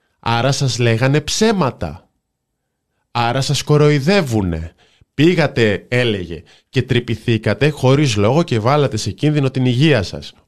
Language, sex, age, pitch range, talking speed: Greek, male, 20-39, 105-150 Hz, 115 wpm